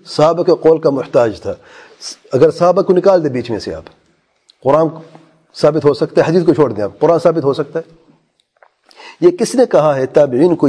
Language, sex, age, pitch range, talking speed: English, male, 40-59, 150-195 Hz, 150 wpm